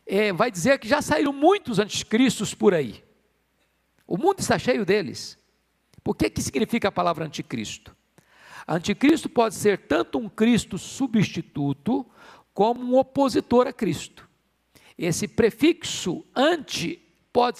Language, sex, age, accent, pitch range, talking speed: Portuguese, male, 50-69, Brazilian, 180-265 Hz, 125 wpm